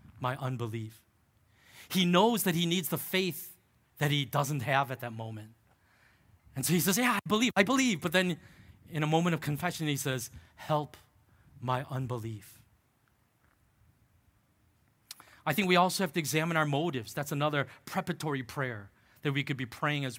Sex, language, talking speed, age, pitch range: male, English, 165 wpm, 30-49, 125-170 Hz